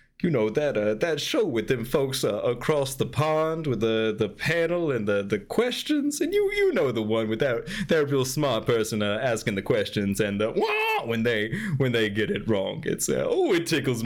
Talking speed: 220 wpm